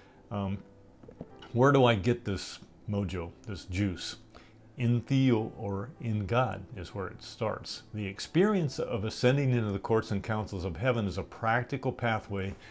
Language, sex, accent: English, male, American